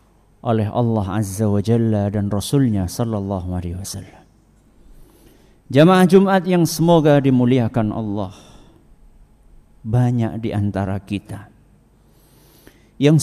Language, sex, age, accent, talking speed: Indonesian, male, 50-69, native, 95 wpm